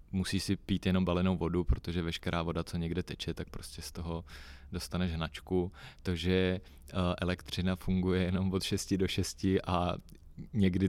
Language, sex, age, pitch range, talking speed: Czech, male, 20-39, 85-95 Hz, 160 wpm